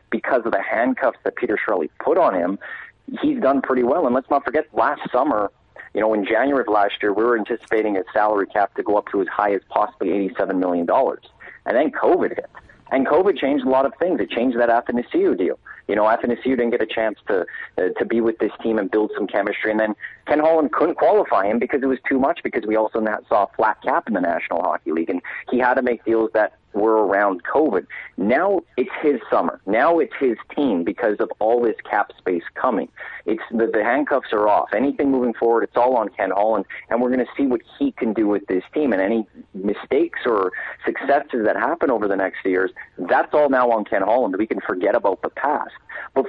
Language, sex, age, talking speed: English, male, 40-59, 230 wpm